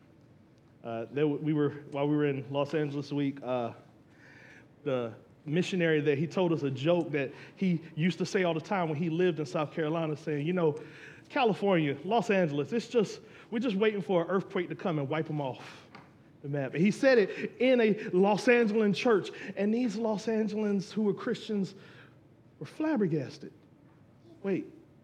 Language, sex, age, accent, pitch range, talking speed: English, male, 30-49, American, 150-215 Hz, 180 wpm